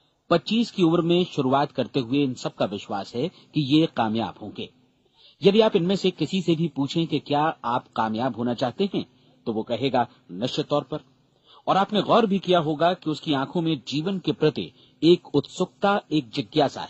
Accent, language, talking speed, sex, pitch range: native, Hindi, 190 wpm, male, 130-170 Hz